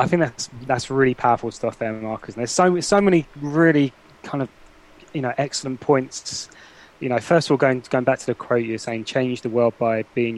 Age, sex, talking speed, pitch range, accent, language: 20-39, male, 225 wpm, 115-140 Hz, British, English